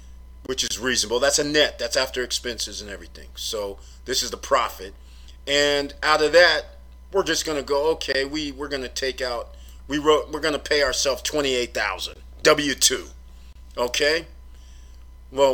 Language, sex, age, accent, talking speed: English, male, 40-59, American, 160 wpm